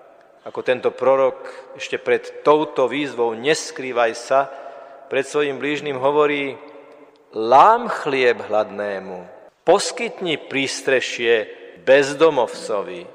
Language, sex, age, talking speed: Slovak, male, 50-69, 85 wpm